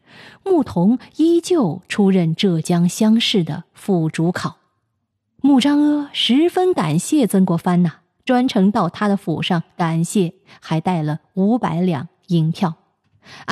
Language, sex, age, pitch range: Chinese, female, 20-39, 170-215 Hz